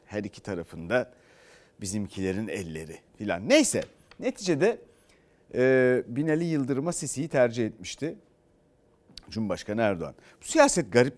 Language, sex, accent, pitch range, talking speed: Turkish, male, native, 110-145 Hz, 90 wpm